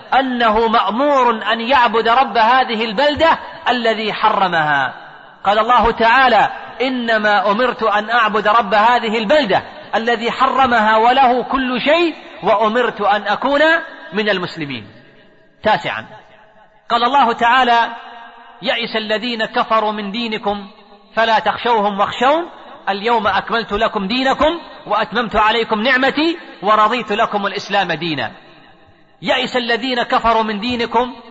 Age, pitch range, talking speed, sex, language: 40-59, 215-260 Hz, 110 wpm, male, Arabic